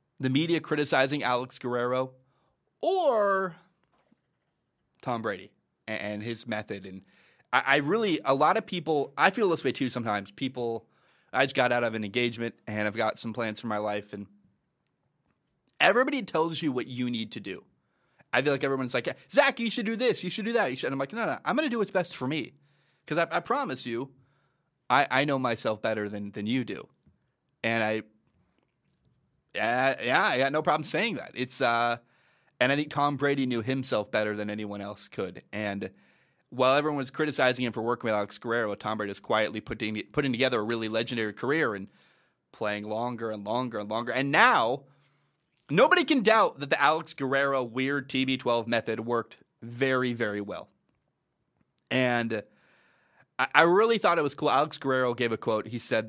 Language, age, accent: English, 20-39, American